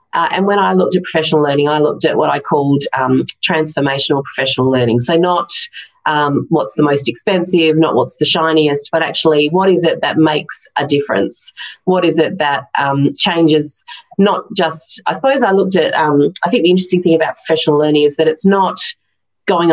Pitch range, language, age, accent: 145-175 Hz, English, 30-49, Australian